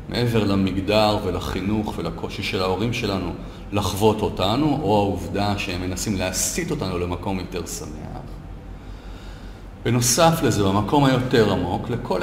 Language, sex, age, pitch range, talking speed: Hebrew, male, 40-59, 90-120 Hz, 120 wpm